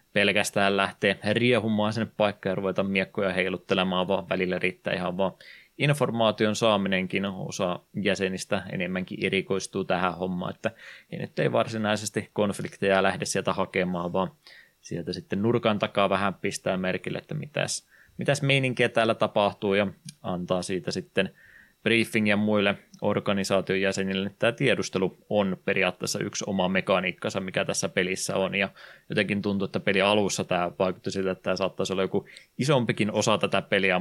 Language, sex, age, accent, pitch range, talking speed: Finnish, male, 20-39, native, 95-110 Hz, 145 wpm